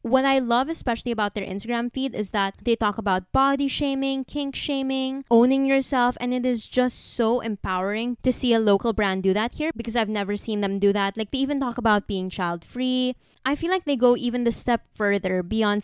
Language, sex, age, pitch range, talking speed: English, female, 20-39, 205-260 Hz, 220 wpm